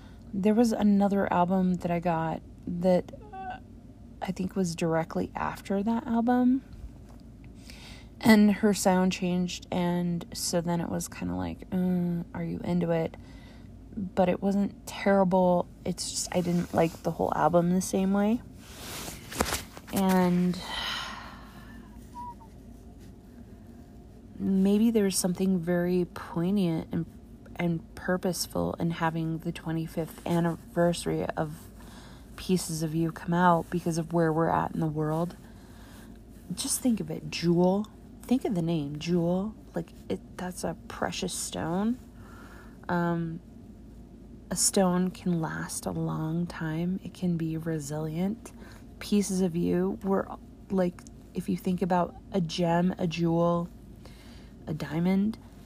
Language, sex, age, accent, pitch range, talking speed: English, female, 30-49, American, 165-195 Hz, 130 wpm